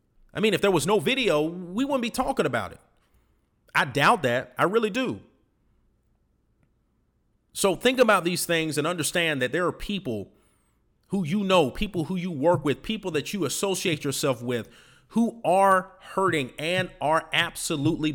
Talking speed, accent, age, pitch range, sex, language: 165 wpm, American, 40-59, 135-195 Hz, male, English